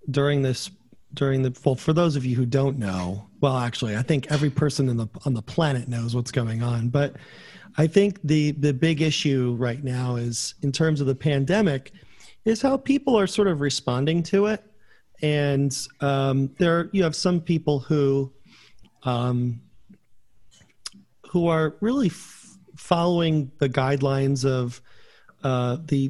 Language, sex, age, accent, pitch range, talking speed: English, male, 40-59, American, 130-155 Hz, 155 wpm